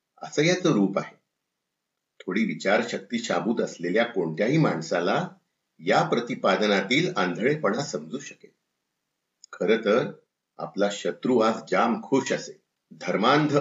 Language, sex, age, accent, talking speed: Marathi, male, 50-69, native, 95 wpm